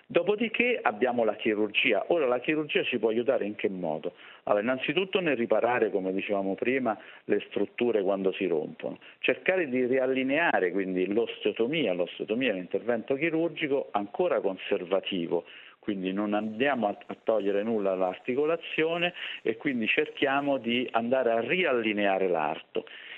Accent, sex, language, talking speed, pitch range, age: native, male, Italian, 135 wpm, 105-155 Hz, 50-69